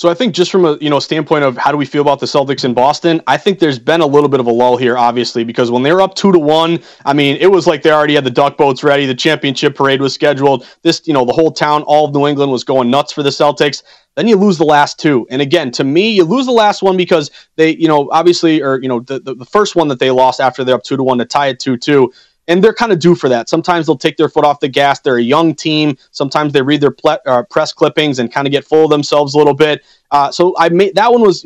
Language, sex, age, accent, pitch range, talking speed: English, male, 30-49, American, 140-175 Hz, 300 wpm